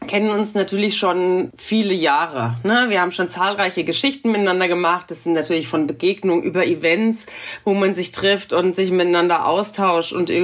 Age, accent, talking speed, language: 40-59, German, 170 wpm, German